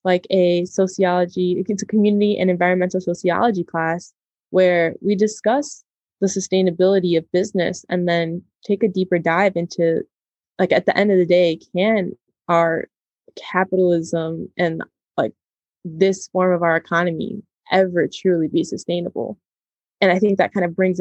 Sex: female